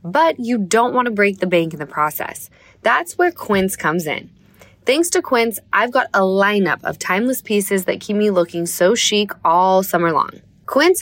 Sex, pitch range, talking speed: female, 170-235 Hz, 195 wpm